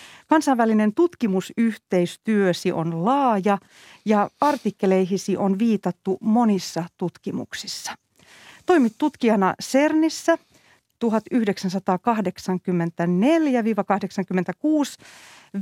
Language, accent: Finnish, native